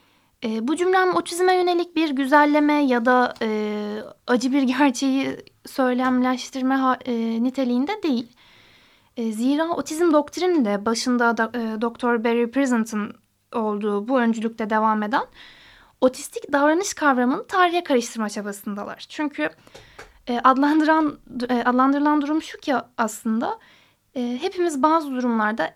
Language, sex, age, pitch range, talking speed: Turkish, female, 10-29, 240-335 Hz, 120 wpm